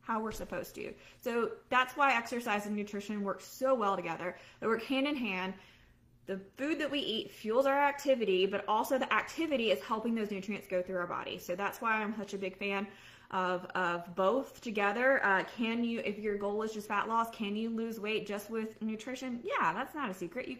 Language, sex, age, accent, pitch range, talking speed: English, female, 20-39, American, 195-240 Hz, 215 wpm